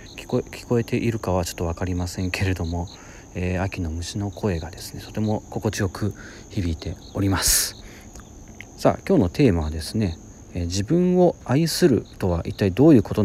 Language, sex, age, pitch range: Japanese, male, 40-59, 95-120 Hz